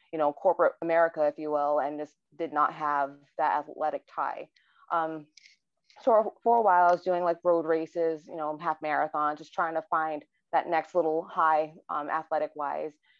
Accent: American